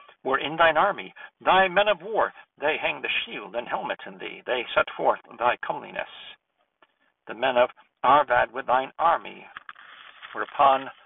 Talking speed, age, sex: 165 wpm, 60-79, male